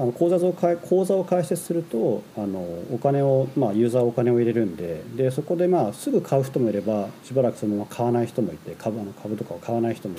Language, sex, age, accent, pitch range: Japanese, male, 40-59, native, 115-165 Hz